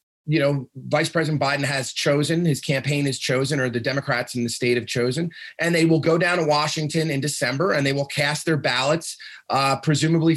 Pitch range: 145-175 Hz